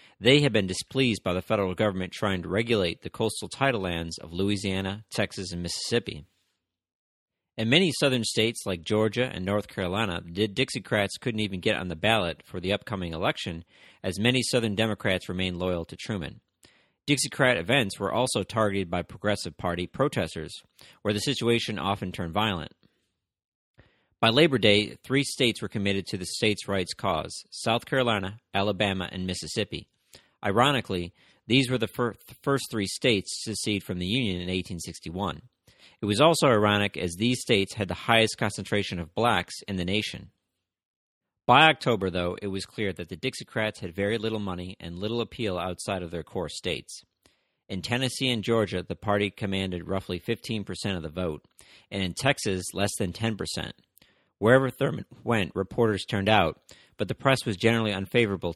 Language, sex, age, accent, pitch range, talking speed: English, male, 40-59, American, 90-115 Hz, 165 wpm